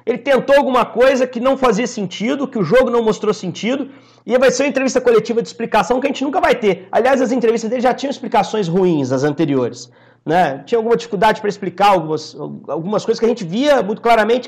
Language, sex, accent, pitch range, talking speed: Portuguese, male, Brazilian, 185-245 Hz, 220 wpm